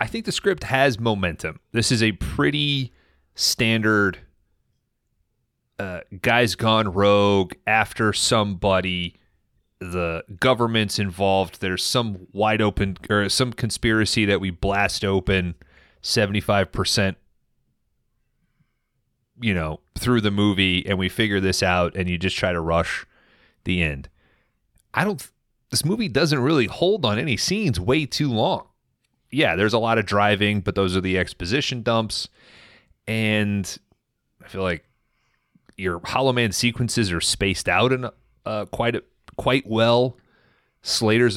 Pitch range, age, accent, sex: 95-115 Hz, 30-49, American, male